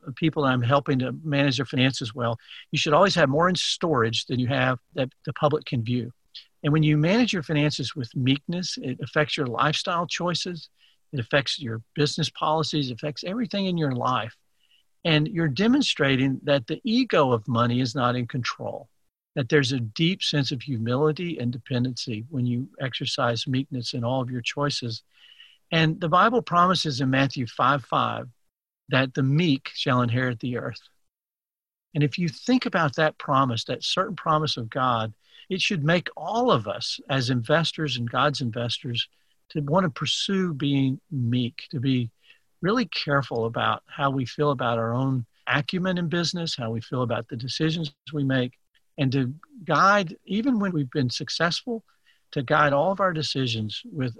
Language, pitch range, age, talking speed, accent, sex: English, 125-160 Hz, 50-69, 175 wpm, American, male